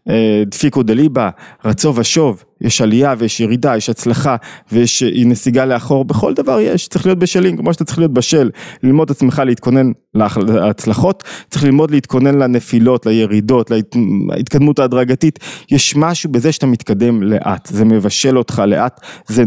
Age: 20-39